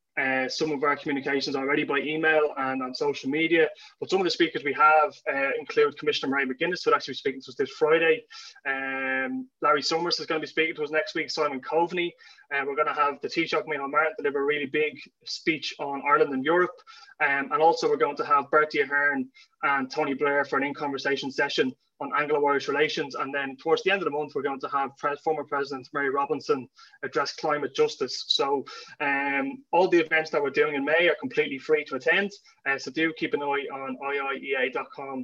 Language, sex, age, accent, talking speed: English, male, 20-39, Irish, 215 wpm